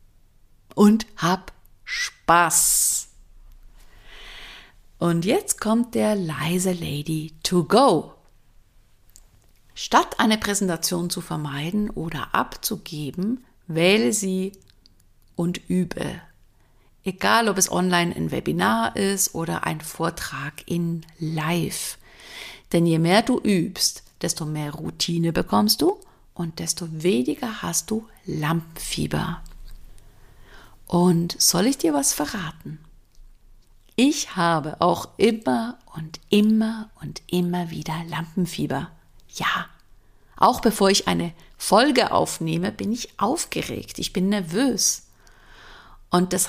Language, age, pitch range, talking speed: German, 50-69, 150-205 Hz, 105 wpm